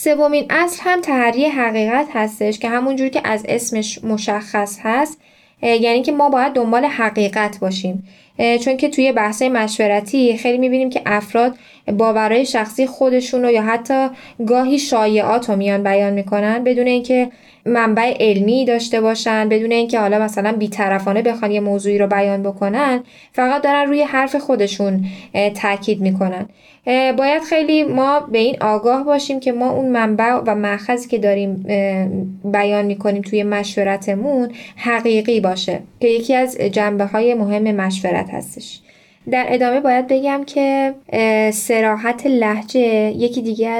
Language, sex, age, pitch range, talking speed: Persian, female, 10-29, 210-255 Hz, 140 wpm